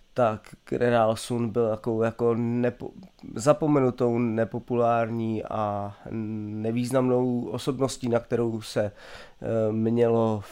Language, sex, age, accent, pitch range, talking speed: Czech, male, 30-49, native, 115-120 Hz, 95 wpm